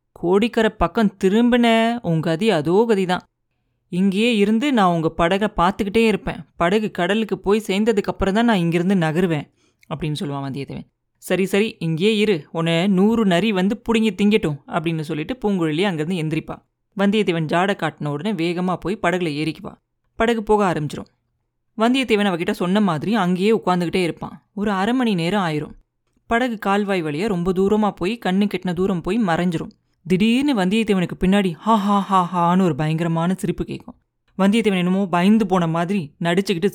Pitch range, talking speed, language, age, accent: 170-210 Hz, 145 wpm, Tamil, 30-49, native